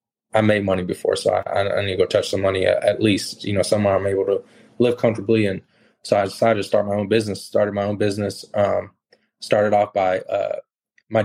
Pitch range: 95-110 Hz